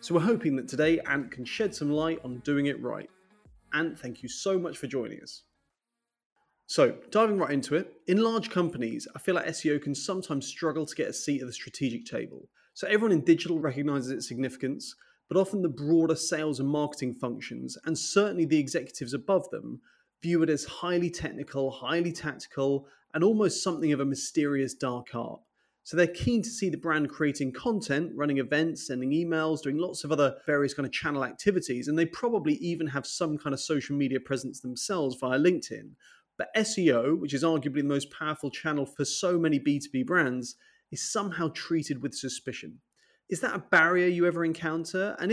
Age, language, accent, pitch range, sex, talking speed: 30-49, English, British, 135-175 Hz, male, 190 wpm